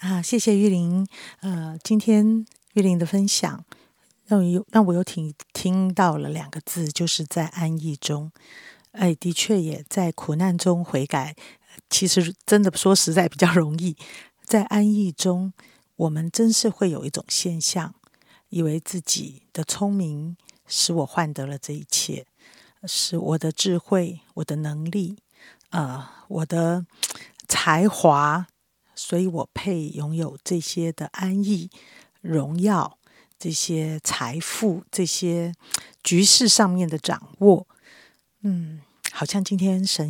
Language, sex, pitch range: Chinese, female, 155-190 Hz